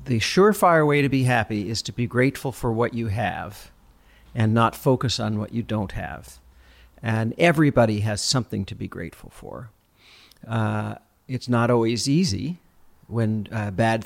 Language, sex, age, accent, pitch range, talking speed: English, male, 50-69, American, 110-135 Hz, 160 wpm